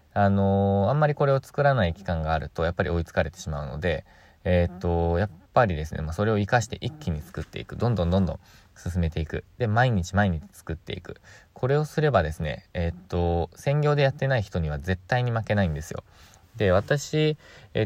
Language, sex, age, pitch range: Japanese, male, 20-39, 85-115 Hz